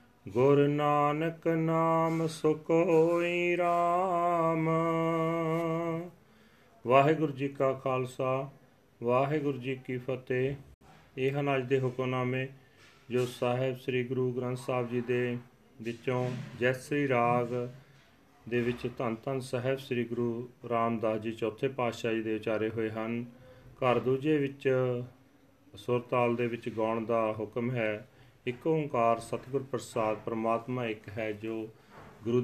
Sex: male